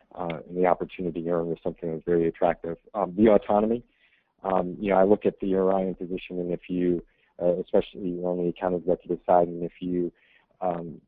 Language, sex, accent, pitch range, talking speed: English, male, American, 85-95 Hz, 210 wpm